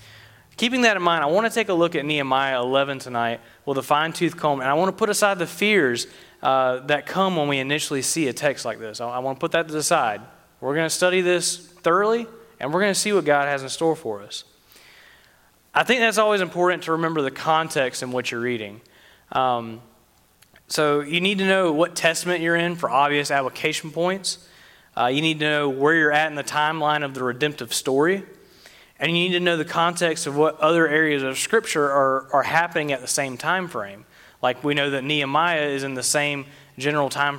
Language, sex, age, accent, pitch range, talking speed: English, male, 20-39, American, 135-170 Hz, 220 wpm